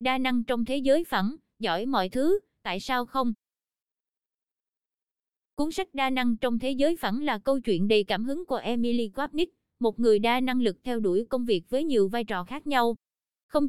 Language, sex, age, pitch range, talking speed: Vietnamese, female, 20-39, 215-270 Hz, 195 wpm